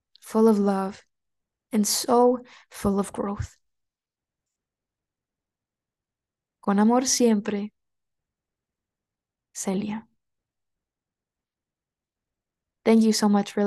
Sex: female